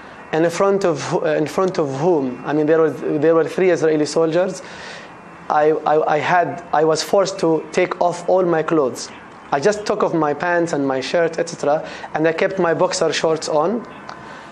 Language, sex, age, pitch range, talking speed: English, male, 20-39, 140-170 Hz, 185 wpm